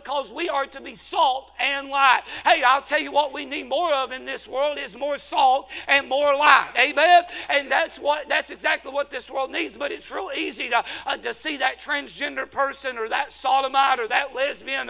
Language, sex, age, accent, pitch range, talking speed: English, male, 50-69, American, 270-335 Hz, 215 wpm